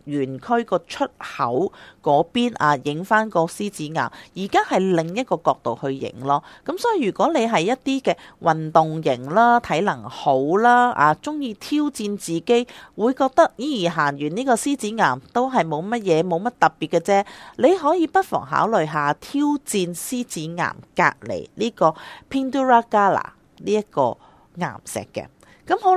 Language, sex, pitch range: Chinese, female, 160-245 Hz